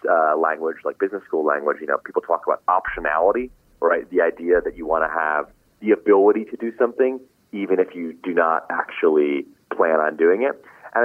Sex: male